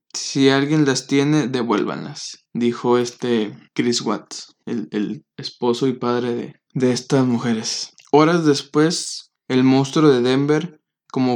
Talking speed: 130 wpm